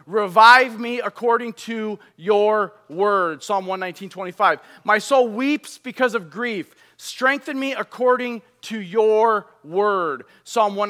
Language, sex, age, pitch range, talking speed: English, male, 30-49, 205-255 Hz, 115 wpm